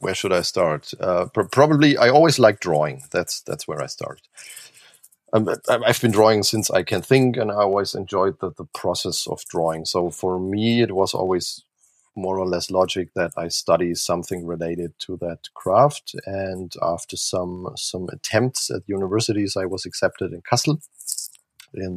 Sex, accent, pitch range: male, German, 90-115 Hz